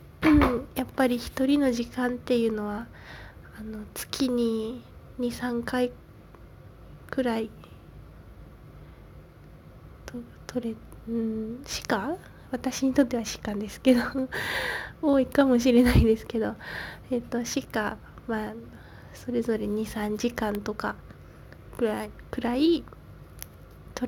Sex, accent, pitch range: female, native, 225-260 Hz